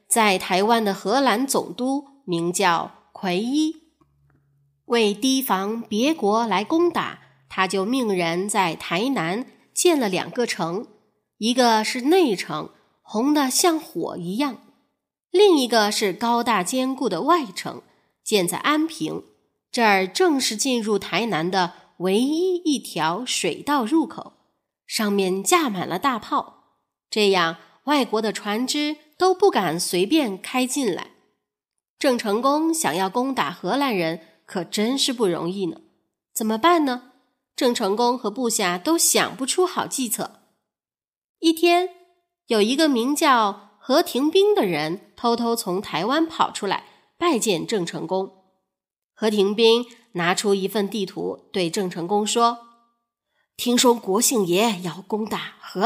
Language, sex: Chinese, female